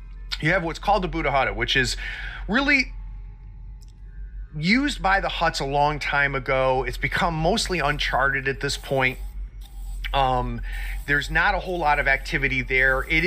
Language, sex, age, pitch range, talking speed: English, male, 30-49, 120-155 Hz, 160 wpm